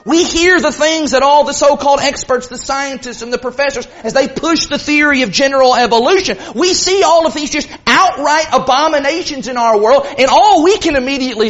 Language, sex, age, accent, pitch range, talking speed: English, male, 40-59, American, 250-350 Hz, 200 wpm